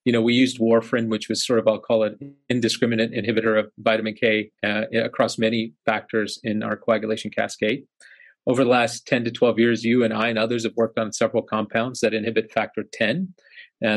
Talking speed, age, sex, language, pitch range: 195 wpm, 40-59, male, English, 110-130 Hz